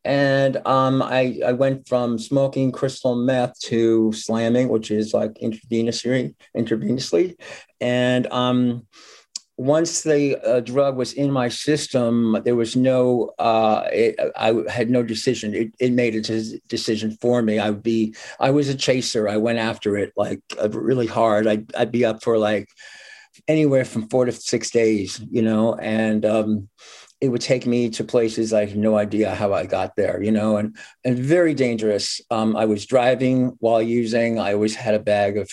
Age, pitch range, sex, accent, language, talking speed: 50-69, 110-125 Hz, male, American, English, 175 wpm